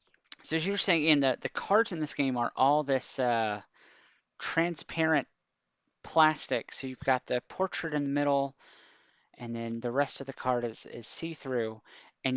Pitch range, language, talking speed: 125-150 Hz, English, 180 wpm